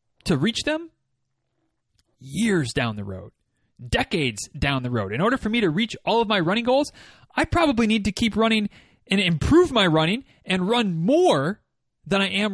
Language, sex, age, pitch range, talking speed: English, male, 30-49, 150-220 Hz, 180 wpm